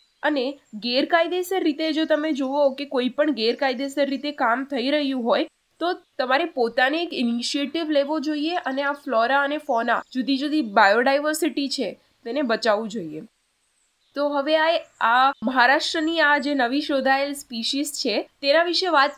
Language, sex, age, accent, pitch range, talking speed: Gujarati, female, 10-29, native, 255-310 Hz, 40 wpm